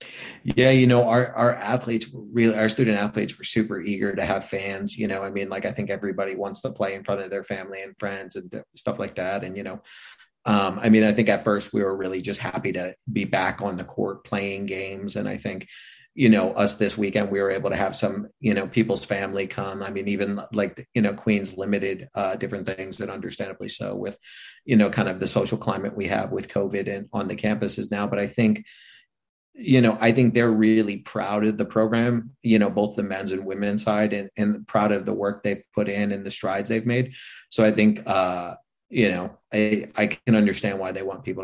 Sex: male